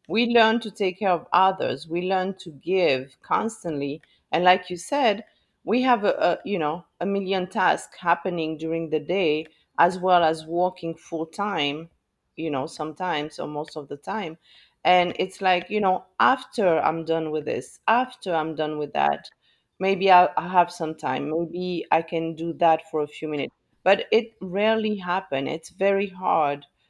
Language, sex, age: English, female, 40-59